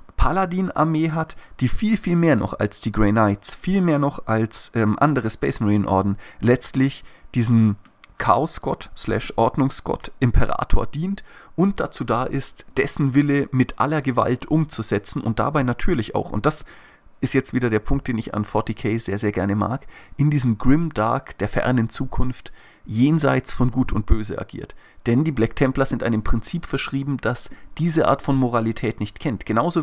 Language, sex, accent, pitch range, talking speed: German, male, German, 110-140 Hz, 165 wpm